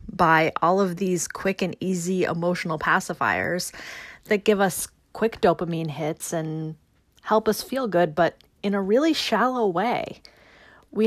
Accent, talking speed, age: American, 145 wpm, 30-49